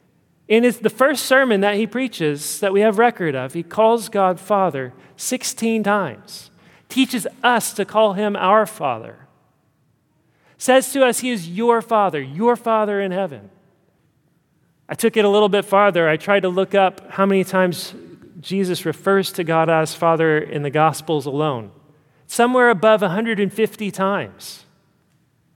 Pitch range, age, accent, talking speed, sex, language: 150-205 Hz, 40-59, American, 155 wpm, male, English